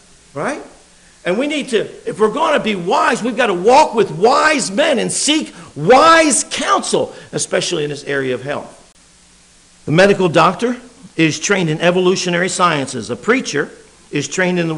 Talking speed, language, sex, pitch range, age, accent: 170 wpm, English, male, 170-230 Hz, 50-69, American